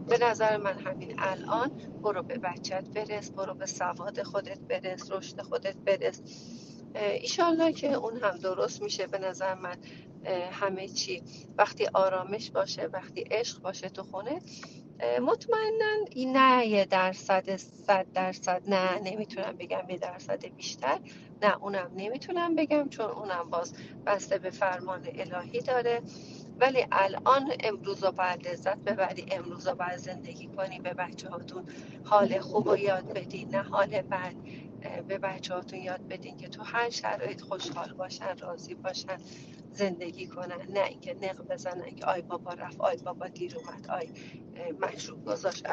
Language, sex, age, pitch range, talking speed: Persian, female, 40-59, 185-225 Hz, 150 wpm